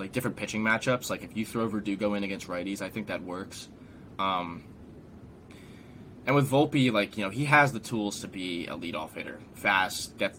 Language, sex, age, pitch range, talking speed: English, male, 10-29, 100-115 Hz, 195 wpm